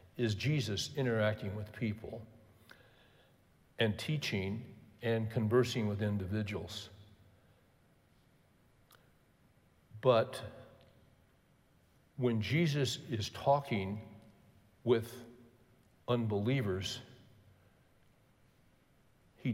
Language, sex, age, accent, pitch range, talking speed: English, male, 60-79, American, 110-130 Hz, 60 wpm